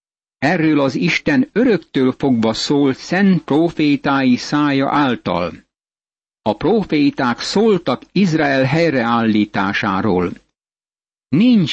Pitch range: 120-150 Hz